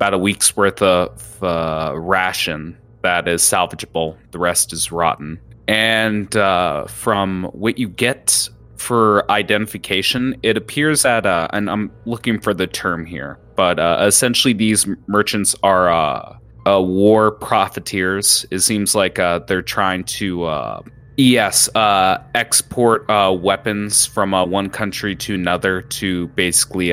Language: English